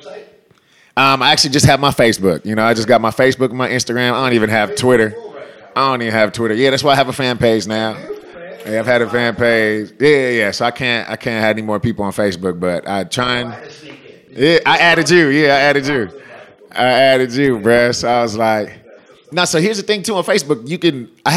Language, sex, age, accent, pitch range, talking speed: English, male, 30-49, American, 110-140 Hz, 245 wpm